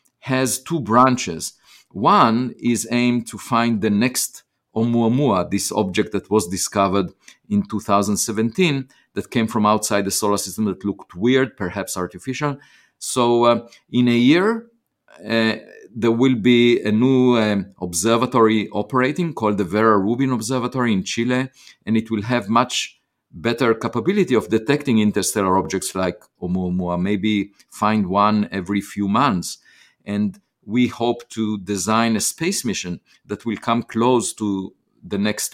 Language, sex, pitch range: English, male, 100-125 Hz